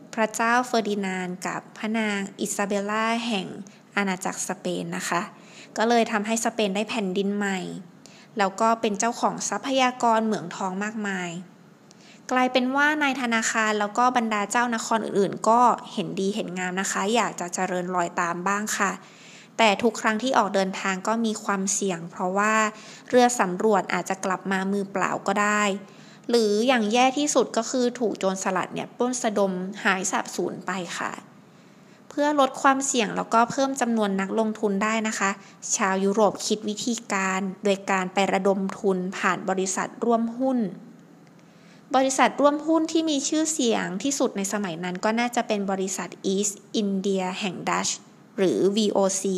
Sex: female